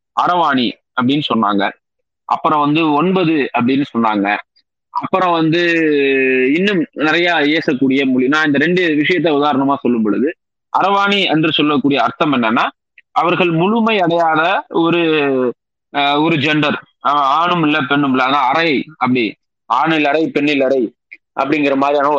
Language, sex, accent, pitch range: Tamil, male, native, 140-175 Hz